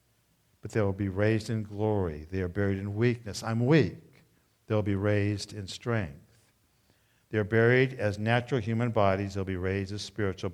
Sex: male